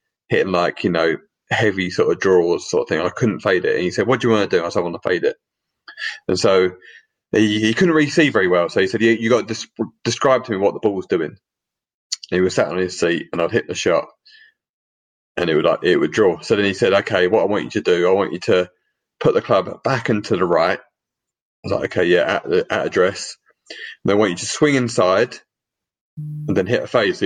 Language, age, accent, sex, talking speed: English, 30-49, British, male, 265 wpm